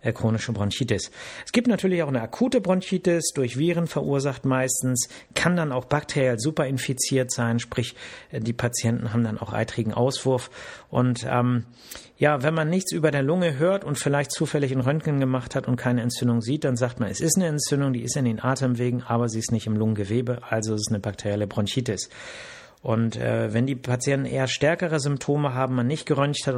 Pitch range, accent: 115-140 Hz, German